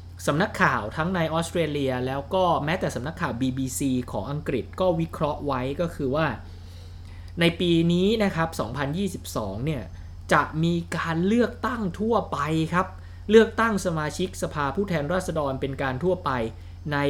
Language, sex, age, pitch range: Thai, male, 20-39, 105-170 Hz